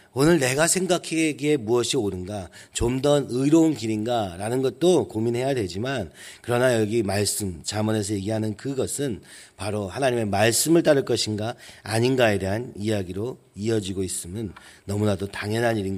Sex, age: male, 40-59